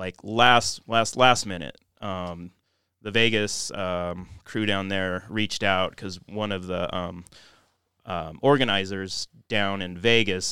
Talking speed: 135 wpm